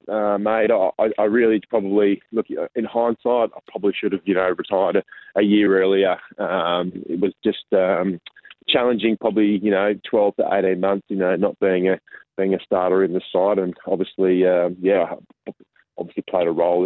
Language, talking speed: English, 190 wpm